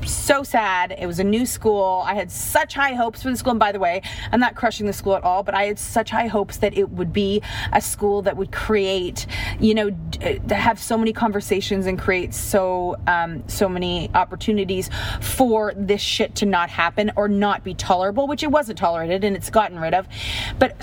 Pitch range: 180-225 Hz